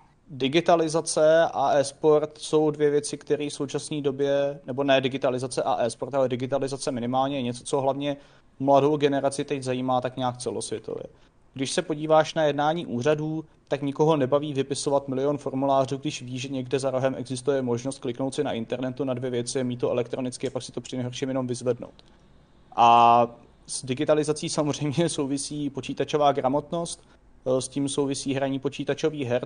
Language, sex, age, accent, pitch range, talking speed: Czech, male, 30-49, native, 135-150 Hz, 165 wpm